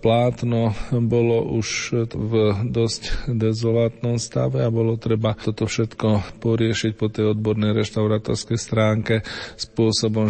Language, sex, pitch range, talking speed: Slovak, male, 110-120 Hz, 110 wpm